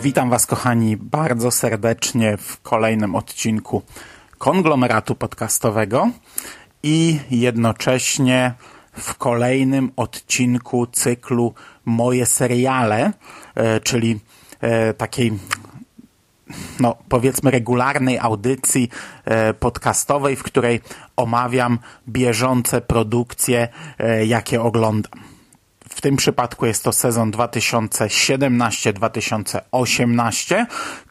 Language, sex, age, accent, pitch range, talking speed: Polish, male, 30-49, native, 115-130 Hz, 75 wpm